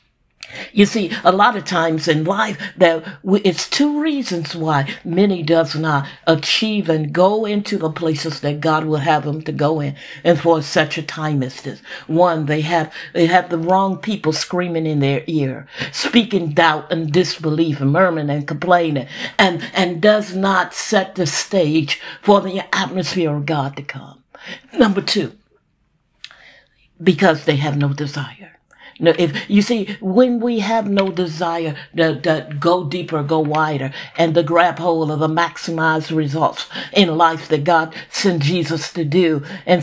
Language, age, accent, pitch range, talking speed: English, 50-69, American, 155-185 Hz, 165 wpm